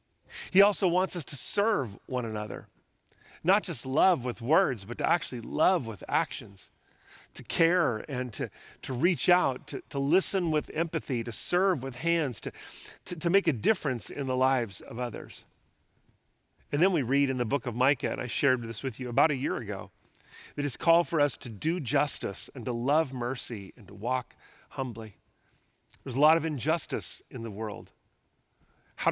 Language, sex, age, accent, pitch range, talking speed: English, male, 40-59, American, 125-155 Hz, 185 wpm